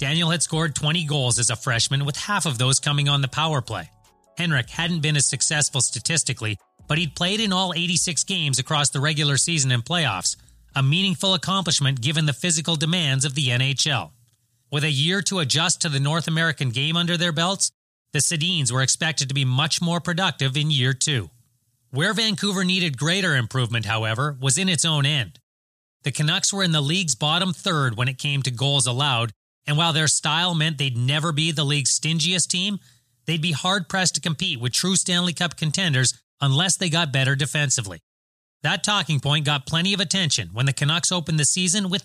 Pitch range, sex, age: 135-170 Hz, male, 30-49